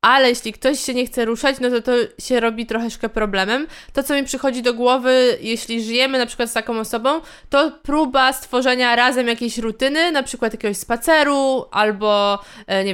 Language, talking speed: Polish, 185 wpm